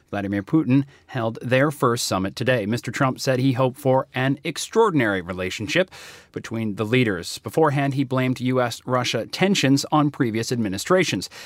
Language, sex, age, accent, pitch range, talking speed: English, male, 40-59, American, 115-145 Hz, 140 wpm